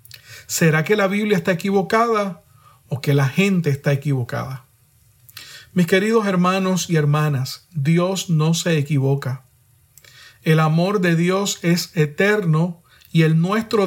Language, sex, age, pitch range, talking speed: Spanish, male, 40-59, 135-190 Hz, 130 wpm